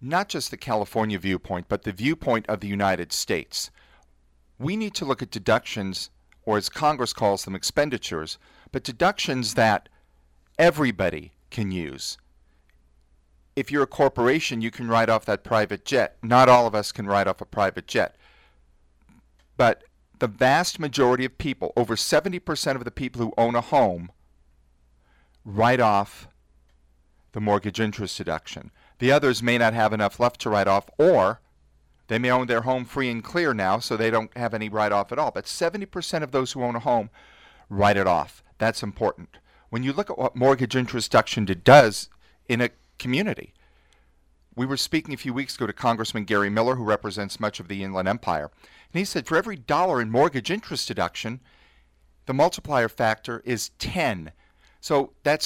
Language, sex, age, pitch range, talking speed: English, male, 40-59, 95-130 Hz, 175 wpm